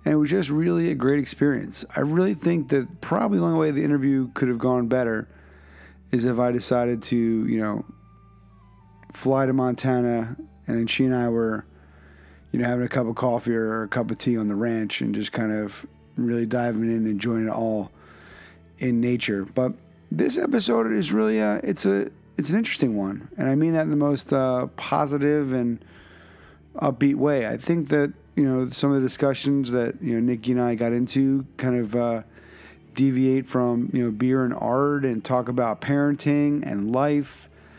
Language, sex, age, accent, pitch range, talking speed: English, male, 30-49, American, 110-135 Hz, 195 wpm